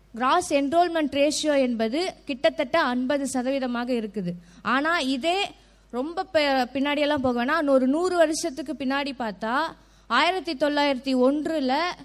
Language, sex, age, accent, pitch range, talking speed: Tamil, female, 20-39, native, 265-325 Hz, 100 wpm